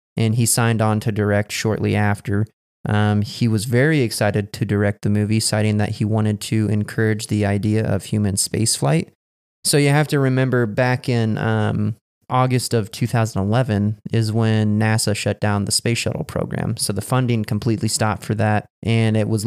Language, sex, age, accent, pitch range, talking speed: English, male, 20-39, American, 105-115 Hz, 180 wpm